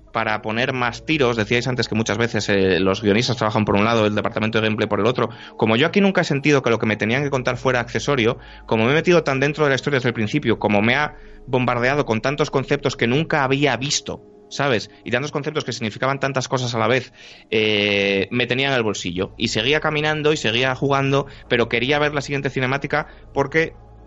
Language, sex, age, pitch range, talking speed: Spanish, male, 30-49, 110-140 Hz, 225 wpm